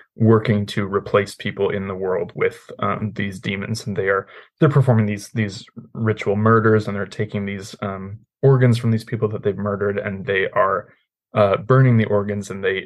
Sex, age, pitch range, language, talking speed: male, 20-39, 100-115 Hz, English, 190 wpm